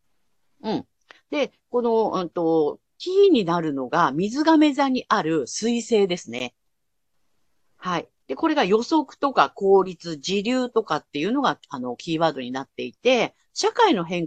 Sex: female